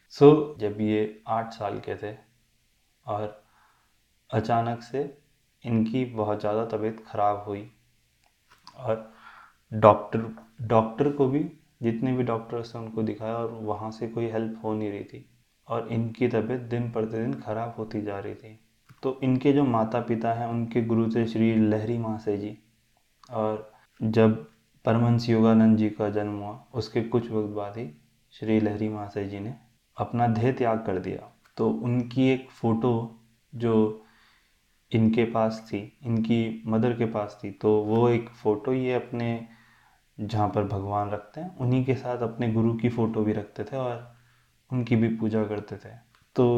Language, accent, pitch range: Hindi, native, 110-120 Hz